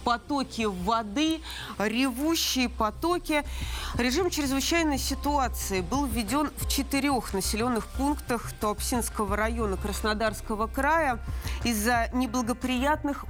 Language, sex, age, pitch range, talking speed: Russian, female, 30-49, 210-260 Hz, 85 wpm